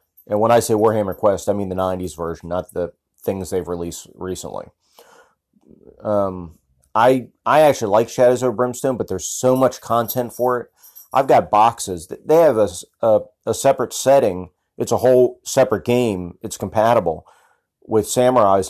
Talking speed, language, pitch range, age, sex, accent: 165 wpm, English, 95-125 Hz, 30-49, male, American